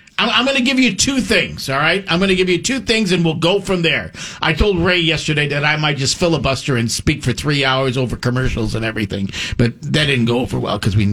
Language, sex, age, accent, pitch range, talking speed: English, male, 50-69, American, 145-240 Hz, 250 wpm